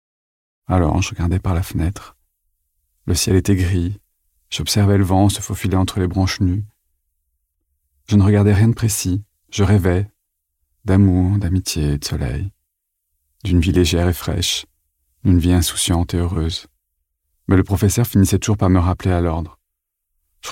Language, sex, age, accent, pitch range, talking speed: French, male, 30-49, French, 75-100 Hz, 150 wpm